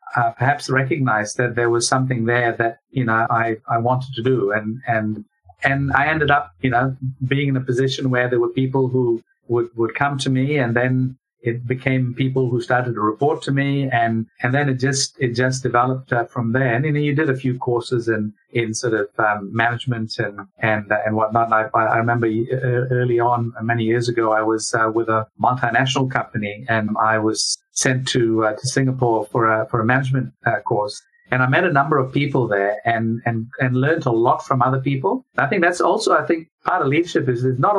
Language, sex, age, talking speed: English, male, 50-69, 220 wpm